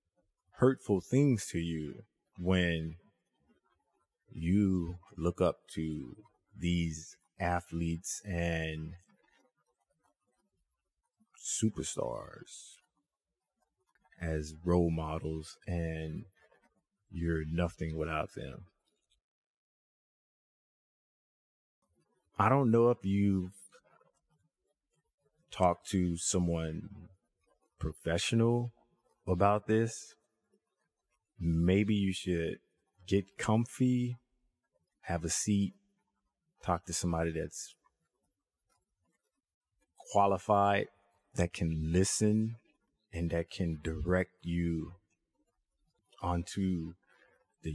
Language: English